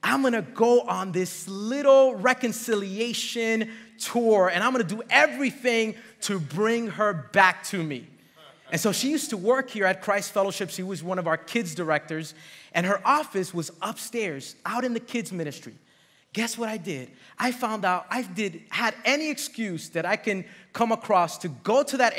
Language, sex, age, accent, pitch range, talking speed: English, male, 30-49, American, 185-235 Hz, 185 wpm